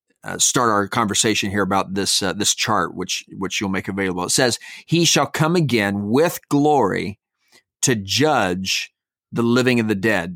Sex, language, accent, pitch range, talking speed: male, English, American, 100-125 Hz, 175 wpm